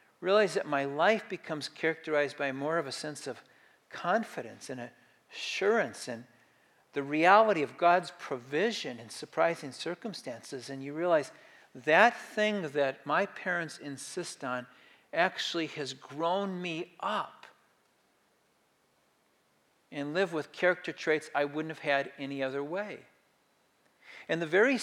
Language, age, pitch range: English, 50-69, 145-195 Hz